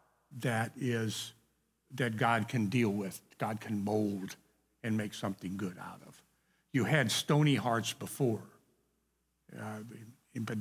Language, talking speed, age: English, 130 wpm, 60-79